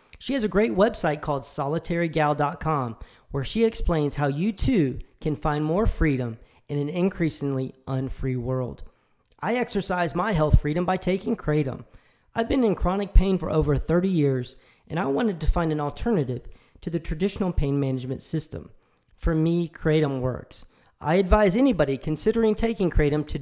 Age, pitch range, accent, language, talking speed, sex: 40-59, 140-185 Hz, American, English, 160 wpm, male